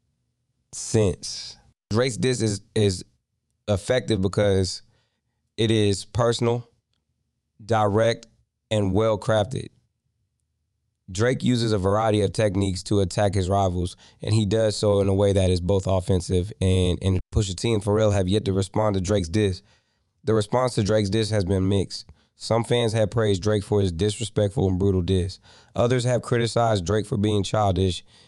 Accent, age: American, 20-39